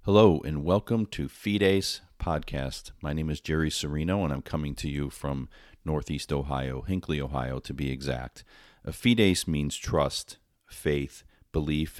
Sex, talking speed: male, 145 wpm